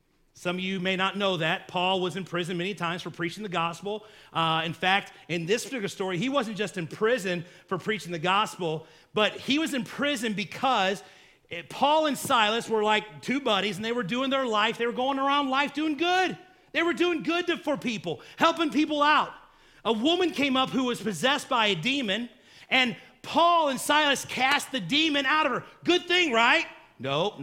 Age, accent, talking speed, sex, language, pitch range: 40-59, American, 200 wpm, male, English, 210-290 Hz